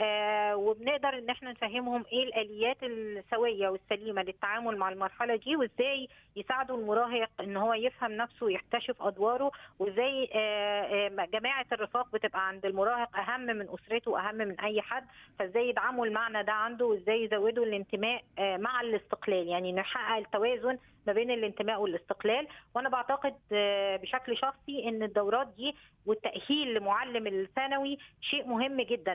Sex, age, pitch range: female, 20-39, 210-255 Hz